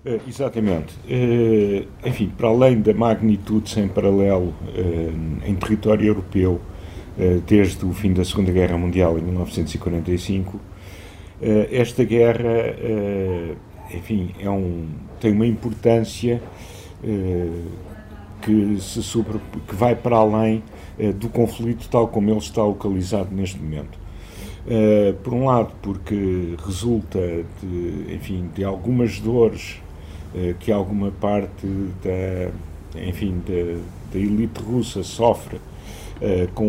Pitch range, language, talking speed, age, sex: 95-115 Hz, Portuguese, 125 wpm, 50-69, male